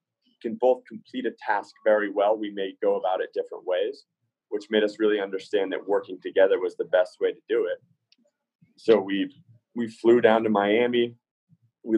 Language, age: English, 30-49